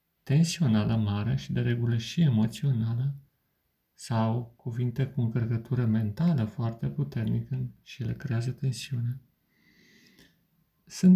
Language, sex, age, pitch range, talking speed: Romanian, male, 40-59, 120-155 Hz, 100 wpm